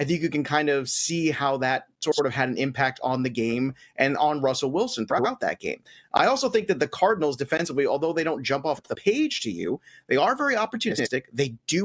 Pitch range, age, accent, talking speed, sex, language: 135-180 Hz, 30-49, American, 235 wpm, male, English